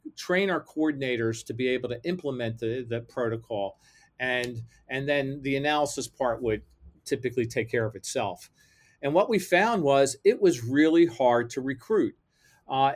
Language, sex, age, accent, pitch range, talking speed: English, male, 40-59, American, 120-155 Hz, 160 wpm